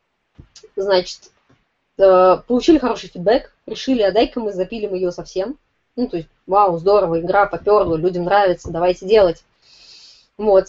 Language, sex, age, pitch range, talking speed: Russian, female, 20-39, 195-270 Hz, 130 wpm